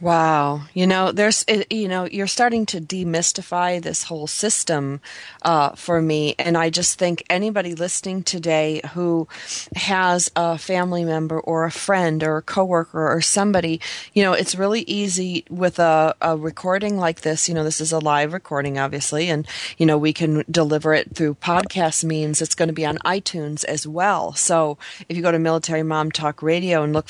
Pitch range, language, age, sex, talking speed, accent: 160-185 Hz, English, 30-49, female, 185 wpm, American